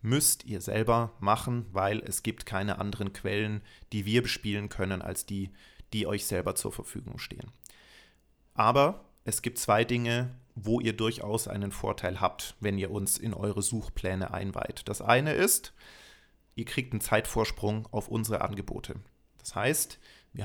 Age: 40-59